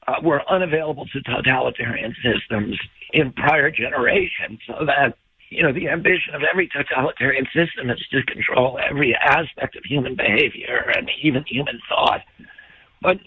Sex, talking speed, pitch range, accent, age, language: male, 145 wpm, 150-215 Hz, American, 60-79, English